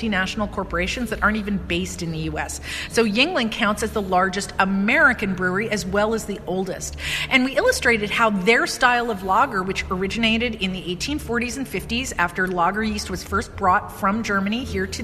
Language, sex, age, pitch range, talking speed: English, female, 40-59, 190-235 Hz, 190 wpm